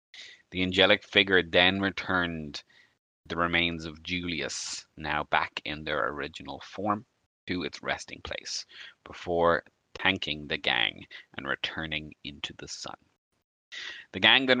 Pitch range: 80-105 Hz